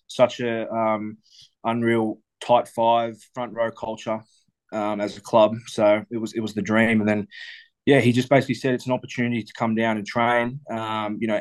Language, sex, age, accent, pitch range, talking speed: English, male, 20-39, Australian, 105-115 Hz, 200 wpm